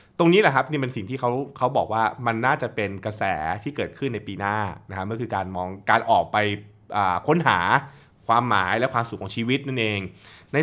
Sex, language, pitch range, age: male, Thai, 100-135 Hz, 20-39